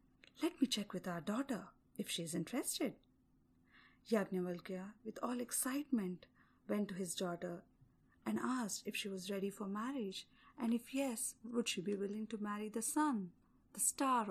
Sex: female